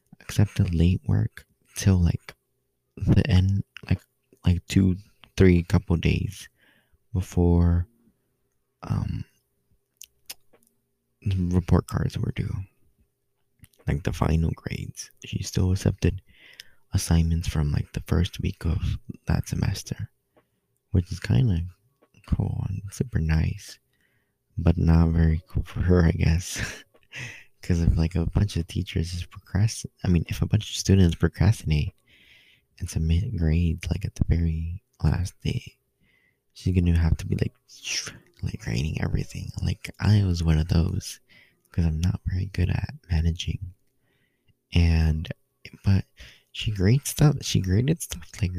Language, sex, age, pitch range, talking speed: English, male, 20-39, 85-110 Hz, 135 wpm